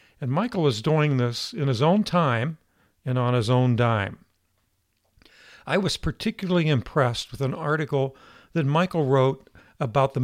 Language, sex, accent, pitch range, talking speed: English, male, American, 115-155 Hz, 150 wpm